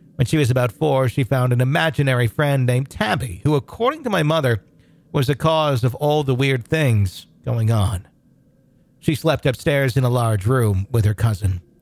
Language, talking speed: English, 190 wpm